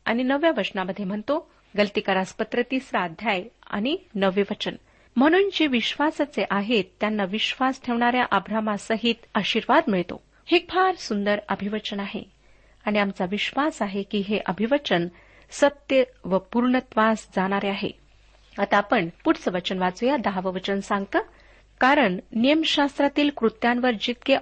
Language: Marathi